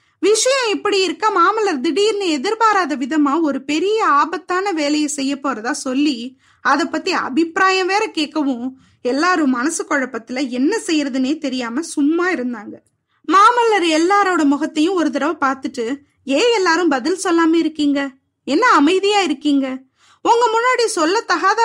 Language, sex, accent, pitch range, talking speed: Tamil, female, native, 280-370 Hz, 120 wpm